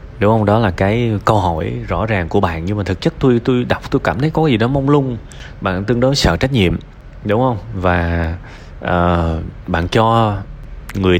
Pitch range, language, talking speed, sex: 90-115 Hz, Vietnamese, 210 wpm, male